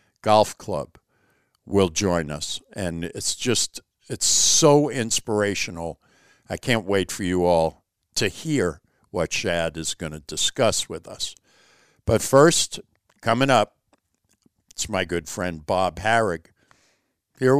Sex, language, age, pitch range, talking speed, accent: male, English, 60-79, 95-130 Hz, 130 wpm, American